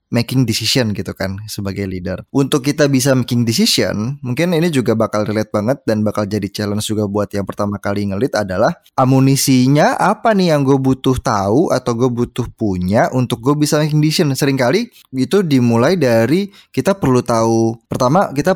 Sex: male